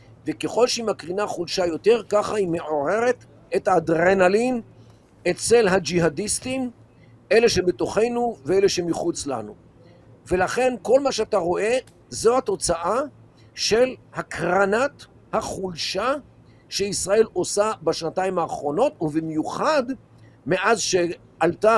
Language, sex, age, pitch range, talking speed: Hebrew, male, 50-69, 165-235 Hz, 95 wpm